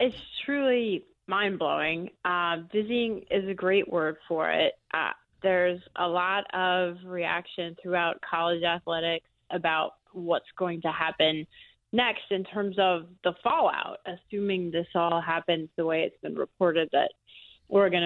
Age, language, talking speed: 20-39, English, 135 wpm